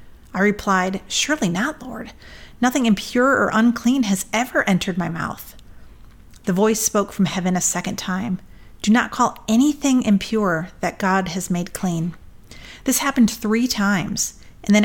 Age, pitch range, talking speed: 30-49, 190-235 Hz, 155 wpm